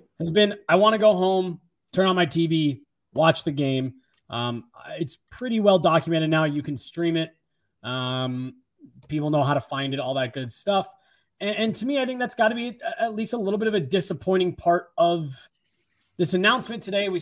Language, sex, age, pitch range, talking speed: English, male, 20-39, 150-195 Hz, 205 wpm